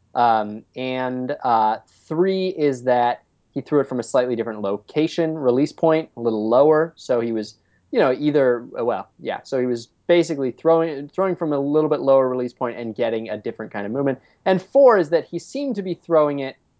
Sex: male